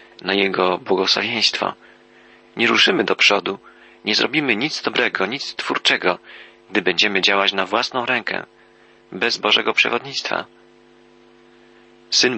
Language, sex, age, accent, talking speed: Polish, male, 40-59, native, 110 wpm